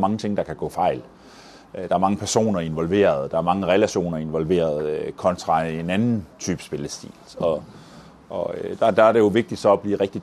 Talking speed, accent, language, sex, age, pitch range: 200 wpm, native, Danish, male, 30-49, 90-105 Hz